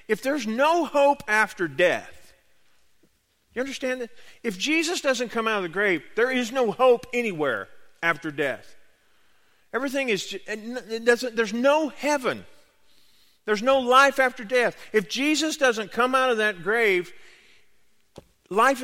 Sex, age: male, 40-59